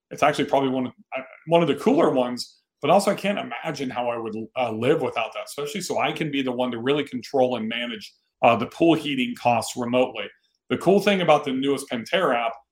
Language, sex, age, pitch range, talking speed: English, male, 40-59, 120-155 Hz, 220 wpm